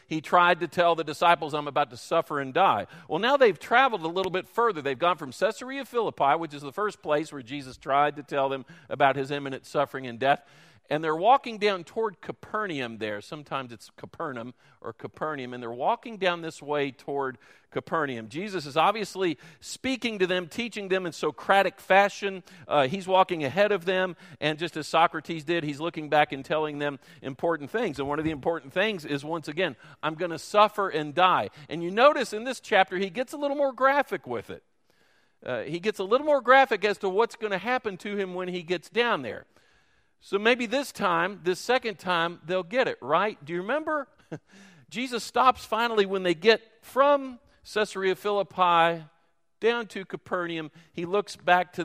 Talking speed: 200 wpm